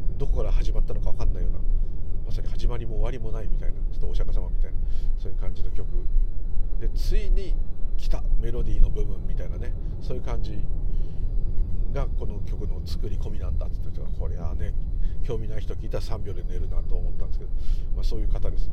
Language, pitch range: Japanese, 85-105 Hz